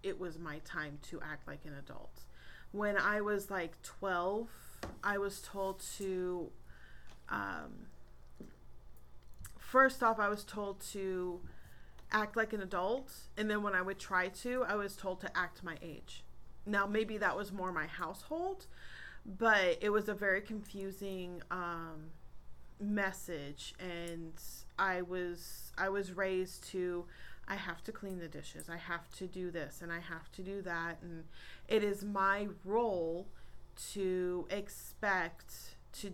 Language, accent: English, American